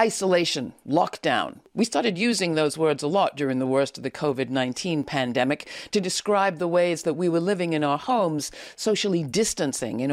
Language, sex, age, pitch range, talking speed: English, female, 60-79, 150-225 Hz, 180 wpm